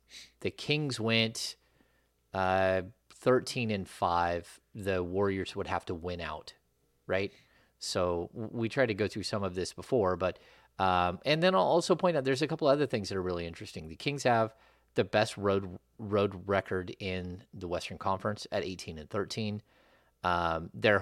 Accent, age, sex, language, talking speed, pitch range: American, 30-49, male, English, 170 wpm, 90-110 Hz